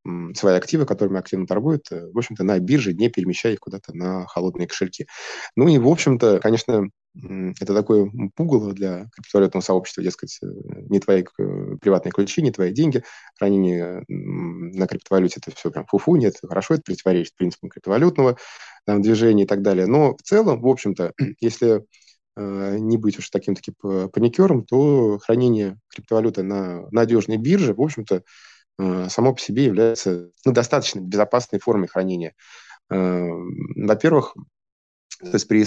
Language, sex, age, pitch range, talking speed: Russian, male, 20-39, 95-120 Hz, 140 wpm